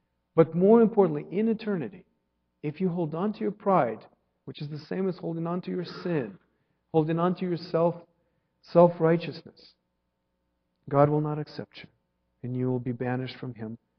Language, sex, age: English, male, 50-69